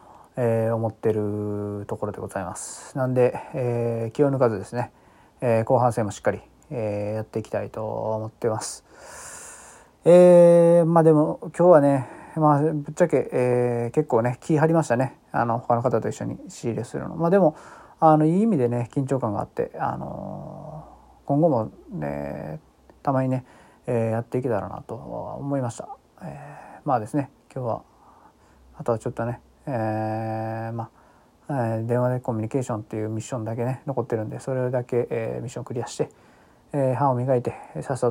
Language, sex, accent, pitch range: Japanese, male, native, 115-140 Hz